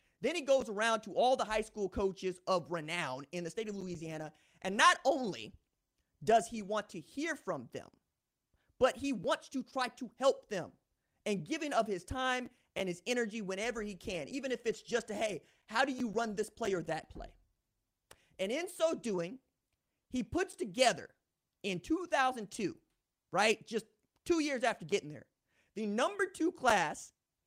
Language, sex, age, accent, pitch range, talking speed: English, male, 30-49, American, 185-265 Hz, 175 wpm